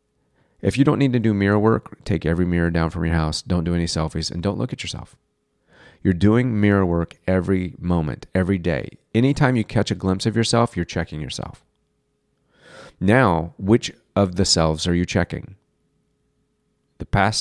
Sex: male